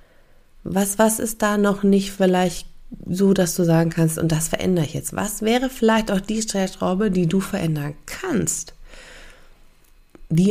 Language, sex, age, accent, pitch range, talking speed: German, female, 20-39, German, 160-200 Hz, 160 wpm